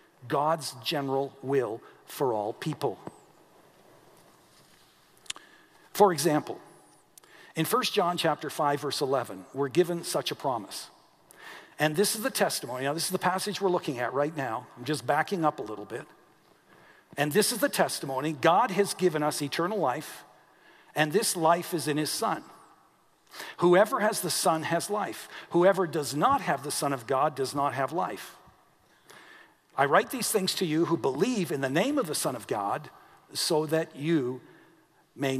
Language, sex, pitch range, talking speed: English, male, 145-195 Hz, 165 wpm